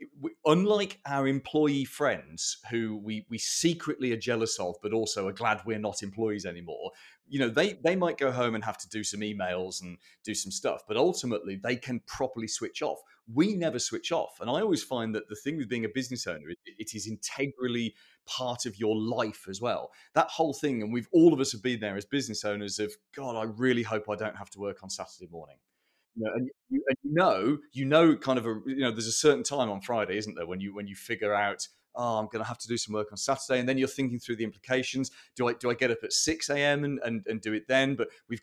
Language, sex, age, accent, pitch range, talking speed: English, male, 30-49, British, 110-140 Hz, 240 wpm